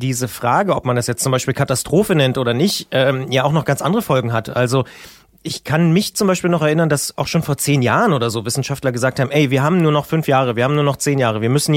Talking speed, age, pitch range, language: 275 wpm, 30-49, 130-170 Hz, German